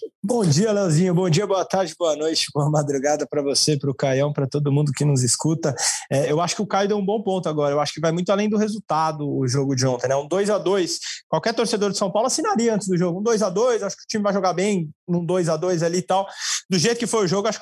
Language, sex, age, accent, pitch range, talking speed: Portuguese, male, 20-39, Brazilian, 165-215 Hz, 285 wpm